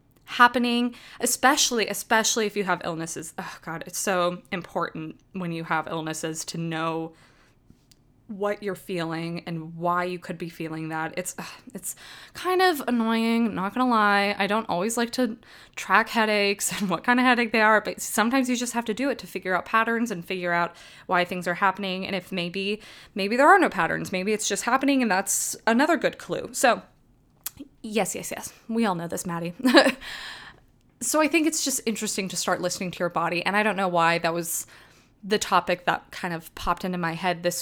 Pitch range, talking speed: 175-235 Hz, 200 wpm